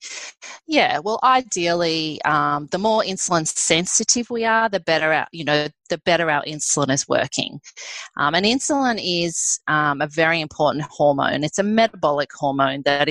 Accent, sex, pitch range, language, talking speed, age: Australian, female, 150-190 Hz, English, 165 wpm, 30-49